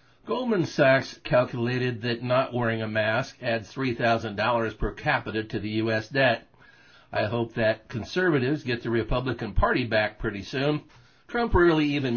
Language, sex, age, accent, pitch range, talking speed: English, male, 50-69, American, 115-140 Hz, 150 wpm